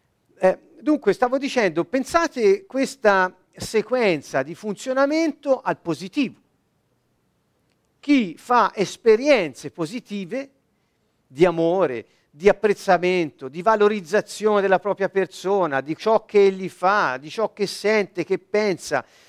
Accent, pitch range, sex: native, 180-255 Hz, male